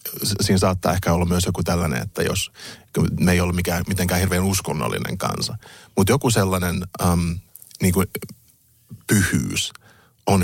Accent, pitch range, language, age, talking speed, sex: native, 90-105 Hz, Finnish, 30-49, 145 wpm, male